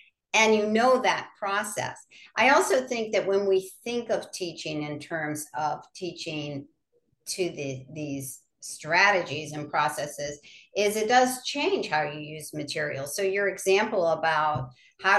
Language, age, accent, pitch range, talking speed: English, 50-69, American, 155-190 Hz, 145 wpm